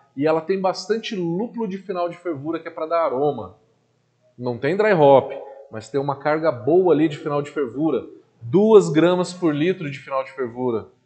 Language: Portuguese